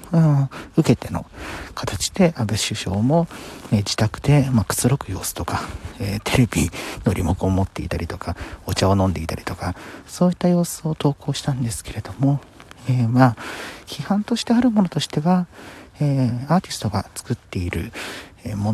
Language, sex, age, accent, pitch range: Japanese, male, 50-69, native, 100-140 Hz